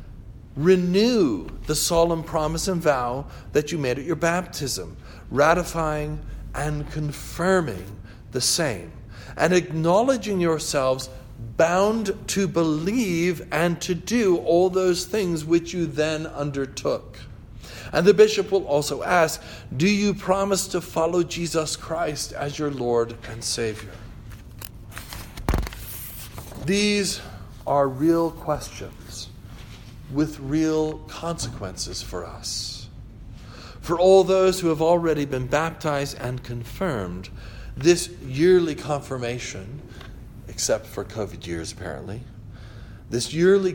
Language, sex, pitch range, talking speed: English, male, 115-170 Hz, 110 wpm